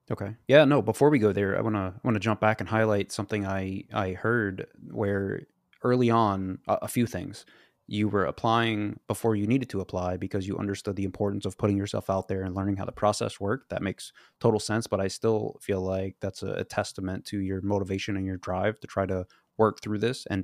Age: 20-39